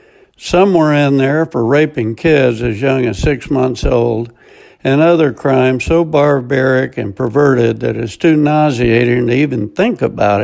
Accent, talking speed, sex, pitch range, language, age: American, 160 wpm, male, 130-170 Hz, English, 60-79